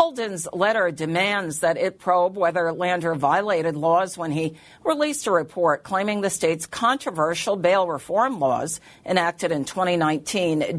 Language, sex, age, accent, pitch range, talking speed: English, female, 50-69, American, 170-240 Hz, 140 wpm